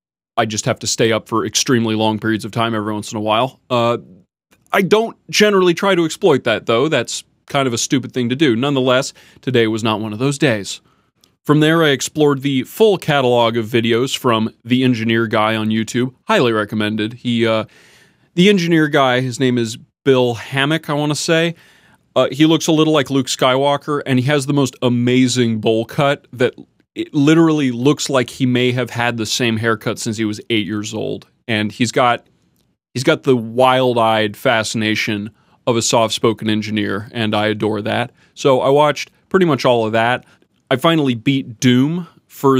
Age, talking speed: 30-49, 190 wpm